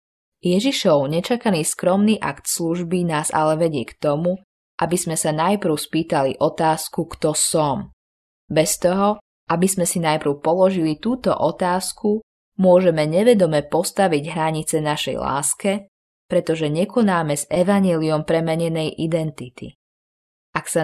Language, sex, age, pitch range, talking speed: Slovak, female, 20-39, 150-195 Hz, 120 wpm